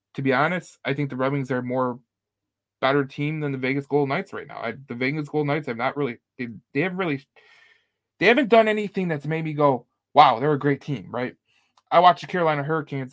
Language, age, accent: English, 20-39, American